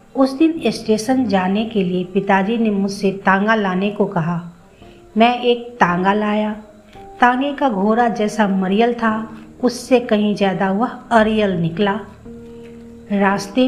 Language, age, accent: Hindi, 50-69, native